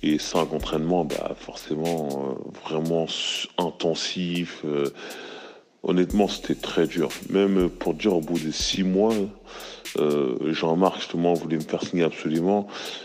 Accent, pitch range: French, 75-90 Hz